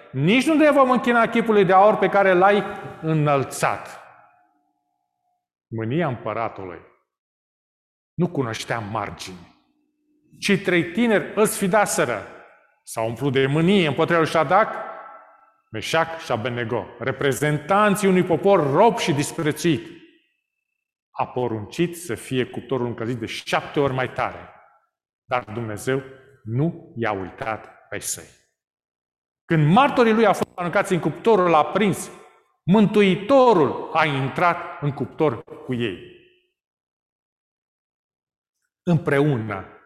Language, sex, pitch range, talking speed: Romanian, male, 115-195 Hz, 115 wpm